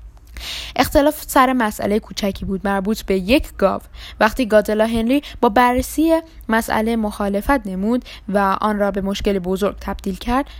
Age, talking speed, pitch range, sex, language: 10-29, 140 wpm, 200-245 Hz, female, Persian